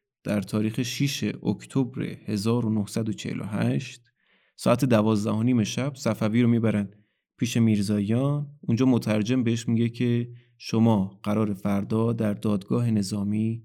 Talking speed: 105 wpm